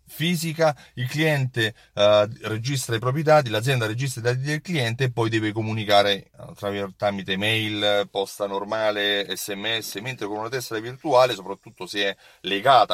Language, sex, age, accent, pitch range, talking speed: Italian, male, 30-49, native, 100-130 Hz, 155 wpm